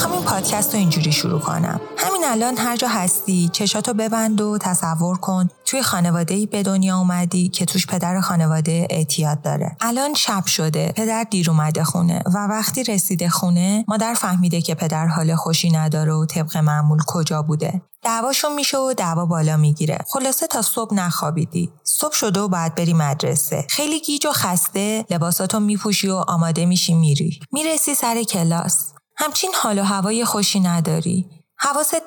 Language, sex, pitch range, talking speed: Persian, female, 170-210 Hz, 160 wpm